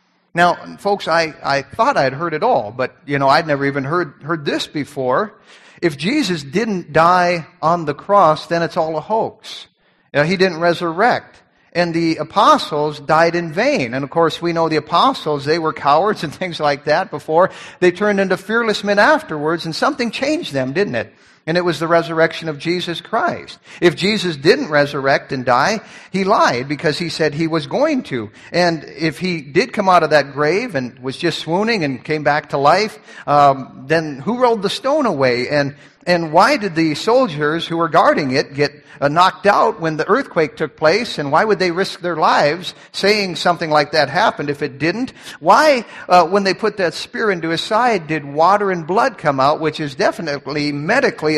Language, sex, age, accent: English, male, 50-69, American